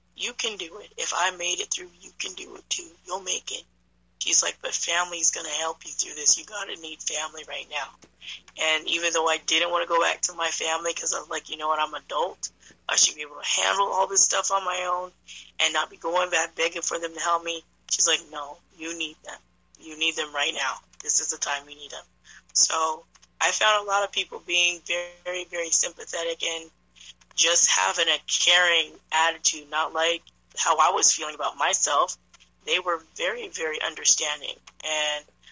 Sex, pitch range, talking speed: female, 155-180 Hz, 215 wpm